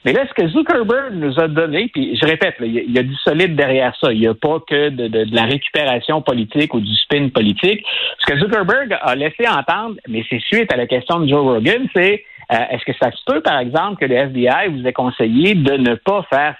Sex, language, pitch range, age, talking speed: male, French, 125-185 Hz, 60-79, 255 wpm